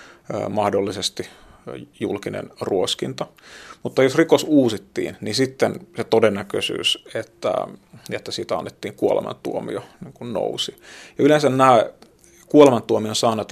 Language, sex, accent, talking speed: Finnish, male, native, 105 wpm